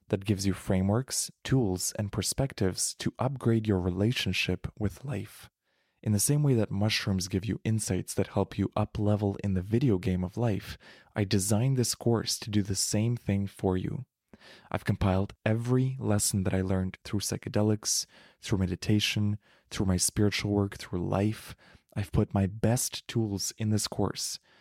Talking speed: 165 wpm